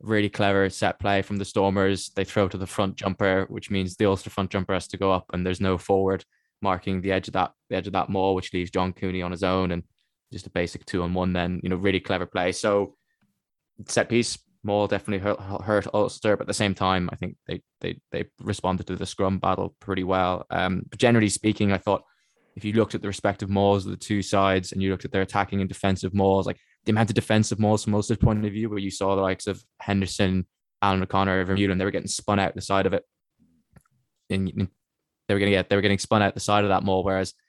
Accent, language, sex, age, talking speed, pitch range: British, English, male, 20-39, 245 wpm, 95-105 Hz